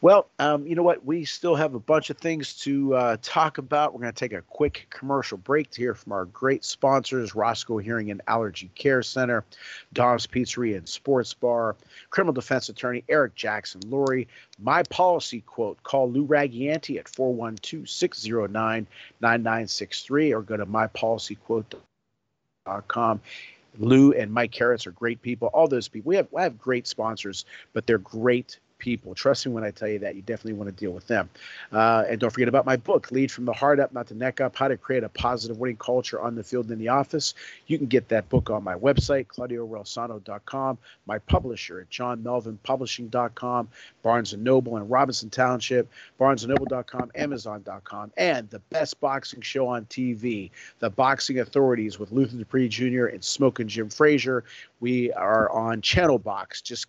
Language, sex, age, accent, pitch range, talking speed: English, male, 40-59, American, 110-135 Hz, 180 wpm